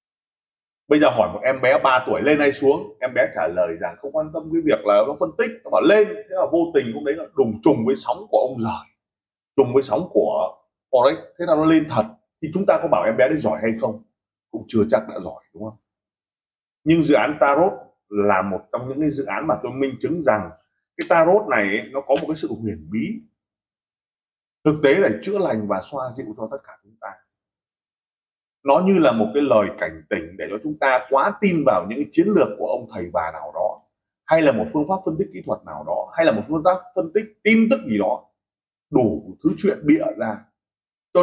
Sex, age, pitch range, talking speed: male, 20-39, 105-160 Hz, 235 wpm